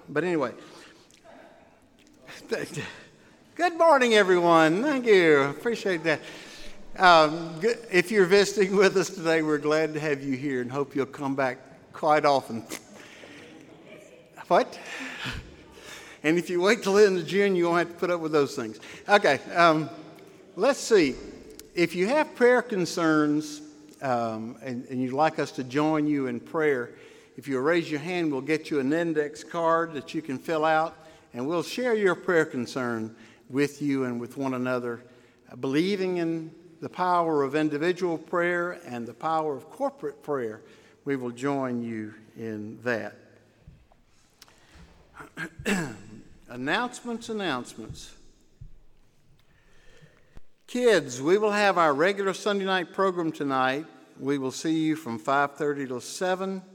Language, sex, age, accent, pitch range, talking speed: English, male, 60-79, American, 135-185 Hz, 140 wpm